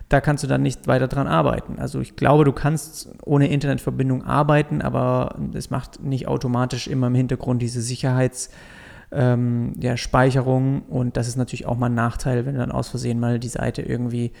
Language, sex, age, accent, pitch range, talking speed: German, male, 30-49, German, 125-140 Hz, 190 wpm